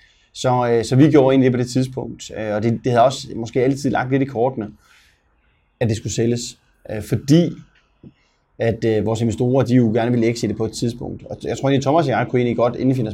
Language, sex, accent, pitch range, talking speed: Danish, male, native, 105-120 Hz, 250 wpm